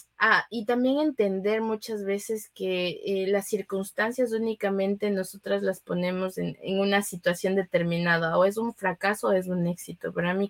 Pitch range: 175-205 Hz